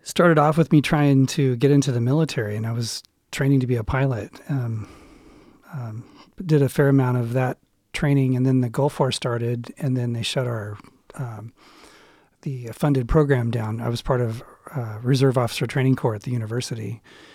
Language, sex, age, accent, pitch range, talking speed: English, male, 40-59, American, 125-150 Hz, 190 wpm